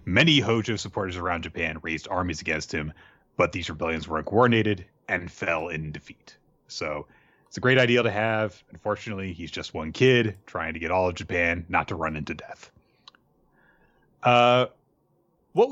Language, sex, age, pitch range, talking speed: English, male, 30-49, 85-125 Hz, 165 wpm